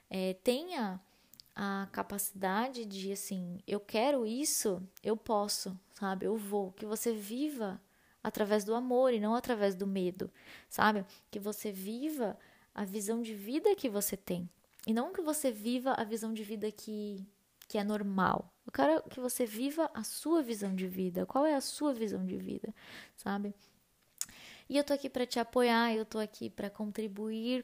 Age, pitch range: 10-29, 200-230 Hz